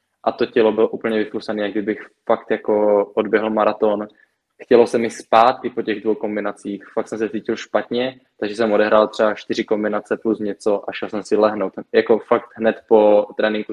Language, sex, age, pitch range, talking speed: Czech, male, 20-39, 105-115 Hz, 190 wpm